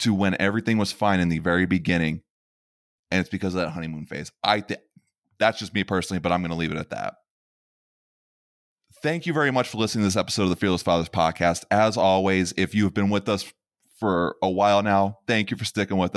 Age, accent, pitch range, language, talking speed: 20-39, American, 95-115 Hz, English, 225 wpm